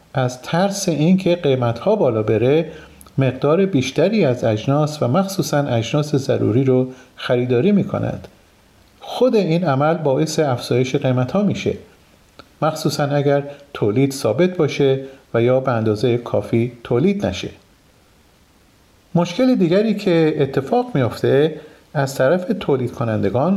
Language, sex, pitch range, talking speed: Persian, male, 130-165 Hz, 120 wpm